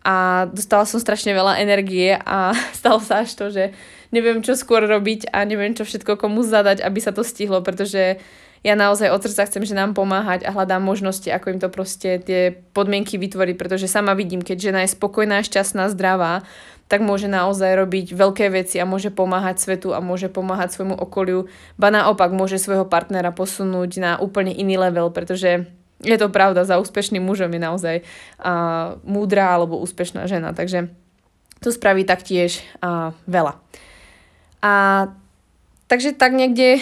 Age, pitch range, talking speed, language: 20-39, 185-205 Hz, 170 wpm, Slovak